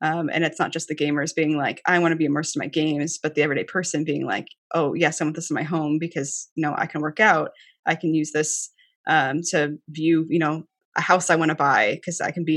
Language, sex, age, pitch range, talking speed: English, female, 20-39, 155-175 Hz, 270 wpm